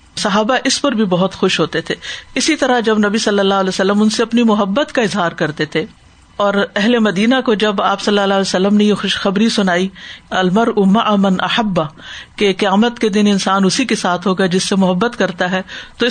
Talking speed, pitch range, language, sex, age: 210 wpm, 195-235 Hz, Urdu, female, 50-69